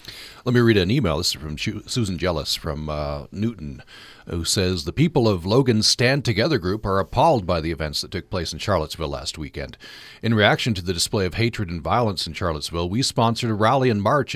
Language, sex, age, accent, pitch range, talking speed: English, male, 40-59, American, 90-120 Hz, 215 wpm